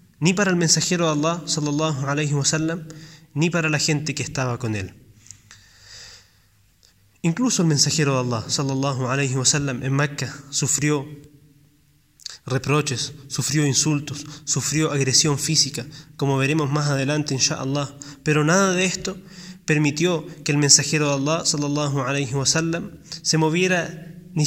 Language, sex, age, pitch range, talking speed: Spanish, male, 20-39, 135-160 Hz, 120 wpm